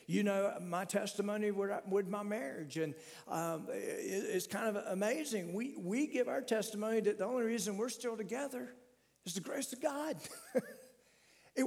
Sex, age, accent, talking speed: male, 50-69, American, 160 wpm